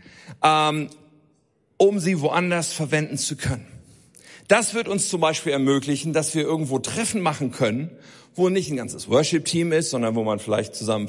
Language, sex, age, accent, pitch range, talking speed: German, male, 50-69, German, 125-165 Hz, 155 wpm